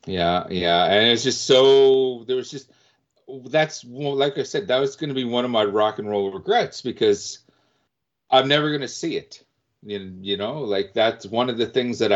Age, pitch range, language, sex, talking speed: 40-59, 95-140 Hz, English, male, 200 wpm